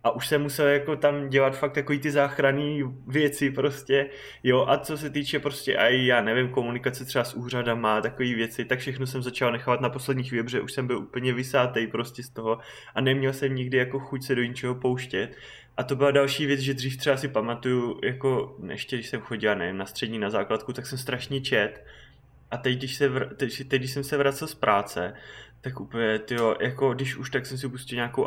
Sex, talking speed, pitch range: male, 215 wpm, 125-140 Hz